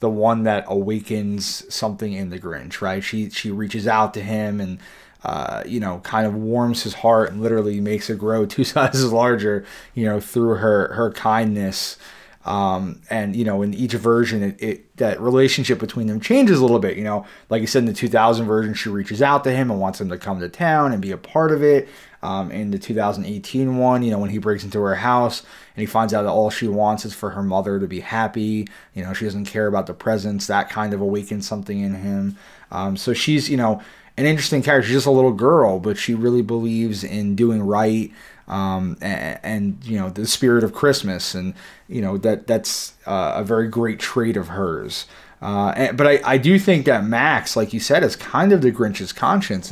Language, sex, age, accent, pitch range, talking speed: English, male, 20-39, American, 100-120 Hz, 220 wpm